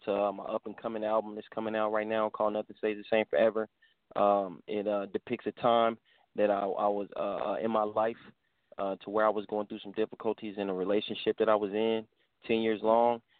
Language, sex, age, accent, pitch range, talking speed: English, male, 20-39, American, 100-110 Hz, 220 wpm